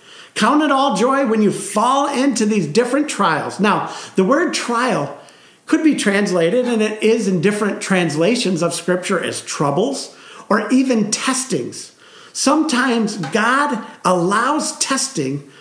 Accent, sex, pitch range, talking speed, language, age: American, male, 180-255 Hz, 135 wpm, English, 50-69